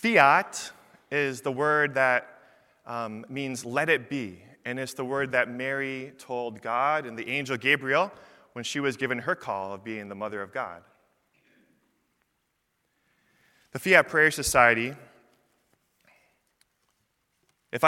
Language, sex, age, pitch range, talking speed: English, male, 20-39, 115-140 Hz, 130 wpm